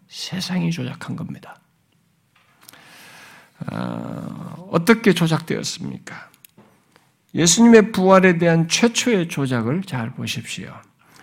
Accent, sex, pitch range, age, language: native, male, 145-195 Hz, 50-69, Korean